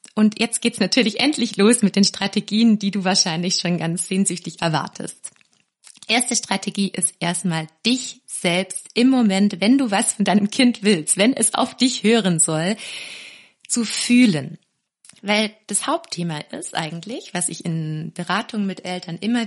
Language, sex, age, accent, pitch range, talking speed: German, female, 30-49, German, 185-235 Hz, 155 wpm